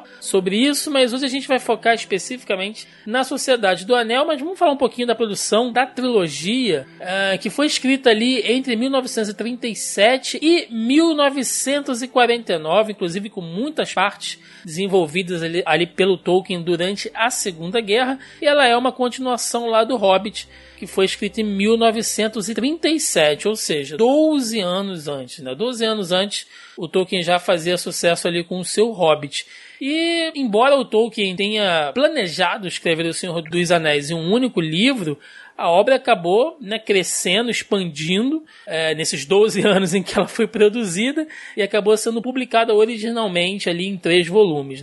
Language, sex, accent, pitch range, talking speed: Portuguese, male, Brazilian, 190-250 Hz, 155 wpm